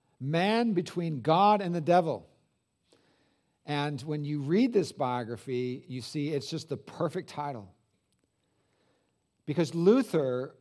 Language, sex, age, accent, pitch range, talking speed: English, male, 50-69, American, 125-160 Hz, 120 wpm